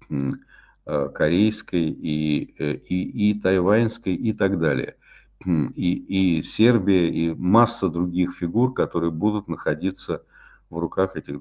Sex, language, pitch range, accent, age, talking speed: male, Russian, 80-95 Hz, native, 50-69, 110 wpm